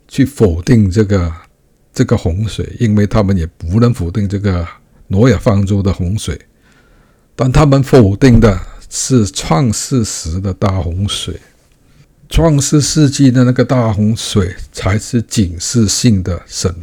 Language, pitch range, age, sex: Chinese, 105-135 Hz, 60-79, male